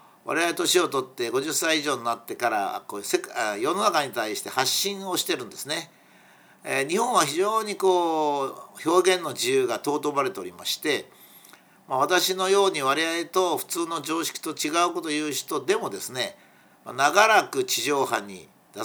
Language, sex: Japanese, male